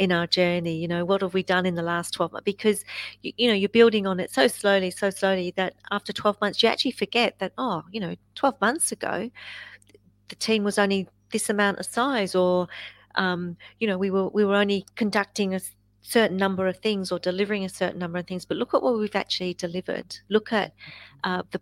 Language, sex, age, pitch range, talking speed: English, female, 40-59, 175-210 Hz, 230 wpm